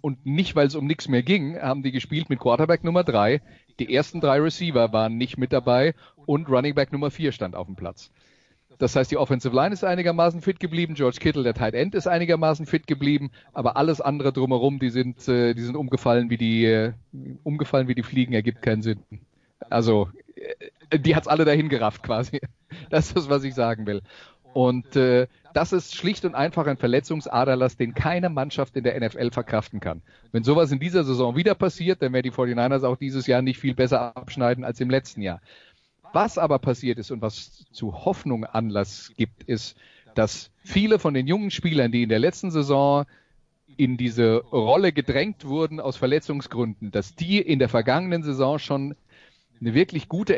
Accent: German